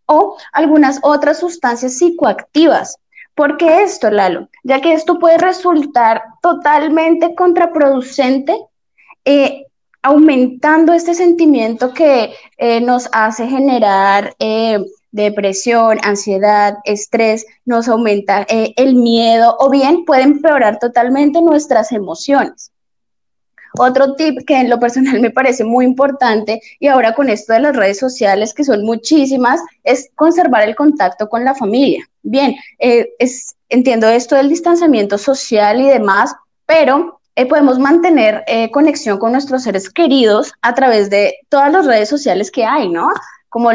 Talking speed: 135 wpm